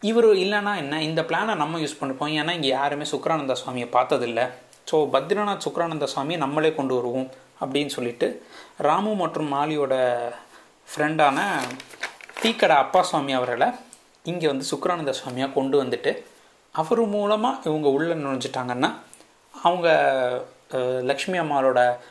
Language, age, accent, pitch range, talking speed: Tamil, 30-49, native, 130-170 Hz, 120 wpm